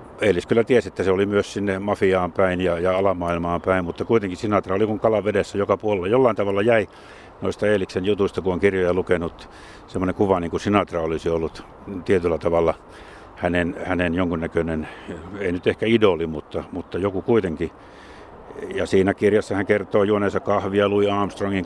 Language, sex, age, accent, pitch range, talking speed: Finnish, male, 60-79, native, 90-100 Hz, 170 wpm